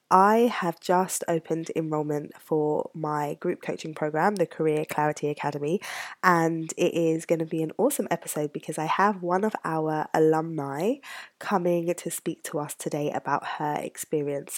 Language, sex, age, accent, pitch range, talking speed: English, female, 20-39, British, 155-180 Hz, 160 wpm